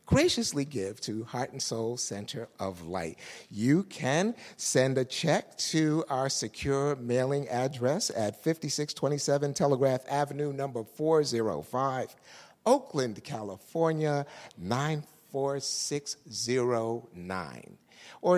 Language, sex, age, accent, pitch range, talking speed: English, male, 50-69, American, 120-165 Hz, 95 wpm